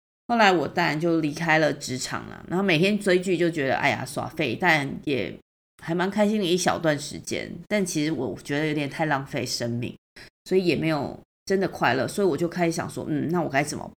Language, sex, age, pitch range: Chinese, female, 30-49, 145-180 Hz